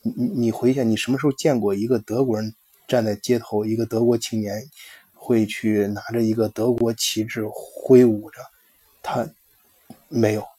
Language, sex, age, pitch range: Chinese, male, 20-39, 110-125 Hz